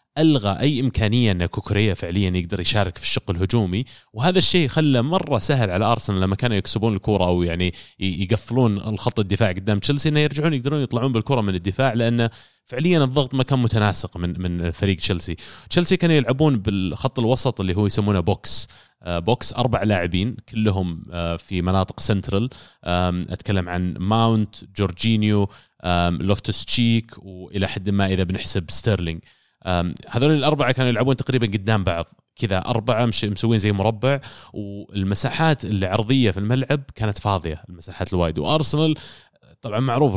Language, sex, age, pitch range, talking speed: Arabic, male, 30-49, 95-130 Hz, 150 wpm